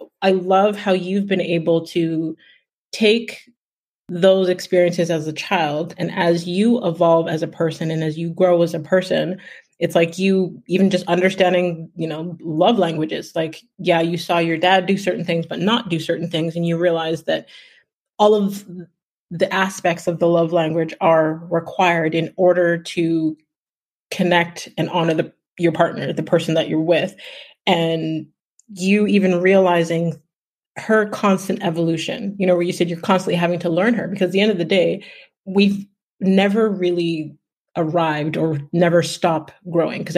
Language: English